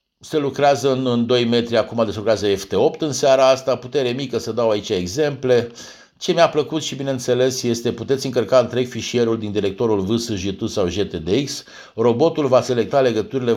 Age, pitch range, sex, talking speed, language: 50-69, 110-130 Hz, male, 165 wpm, Romanian